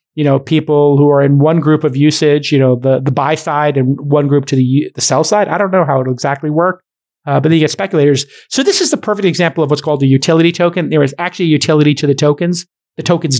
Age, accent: 40-59, American